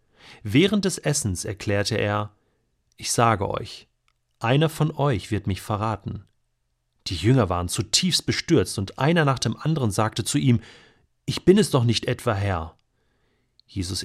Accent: German